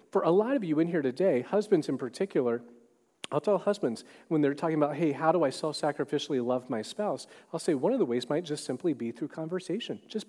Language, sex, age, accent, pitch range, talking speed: English, male, 40-59, American, 125-165 Hz, 230 wpm